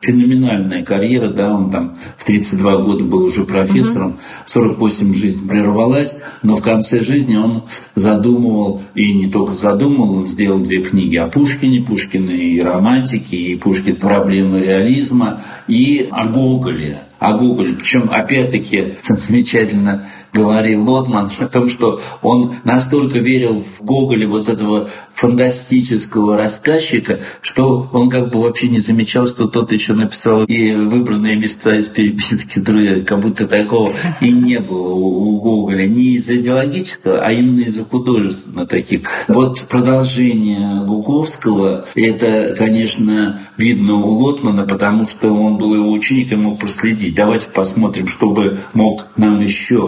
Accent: native